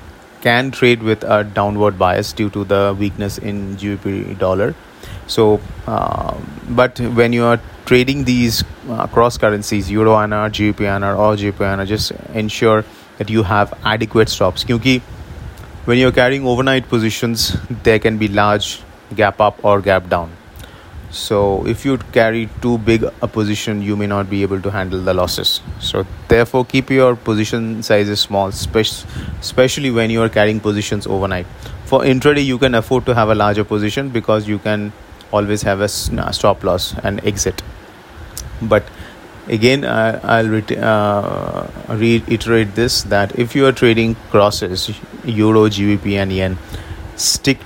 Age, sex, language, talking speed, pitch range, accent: 30-49, male, English, 150 wpm, 100-115 Hz, Indian